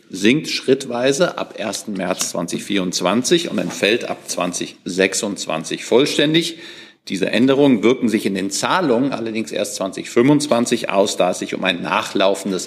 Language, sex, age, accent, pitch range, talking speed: German, male, 50-69, German, 100-130 Hz, 135 wpm